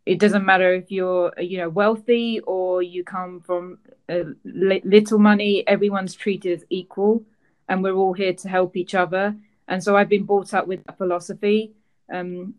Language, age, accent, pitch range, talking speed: English, 20-39, British, 180-205 Hz, 180 wpm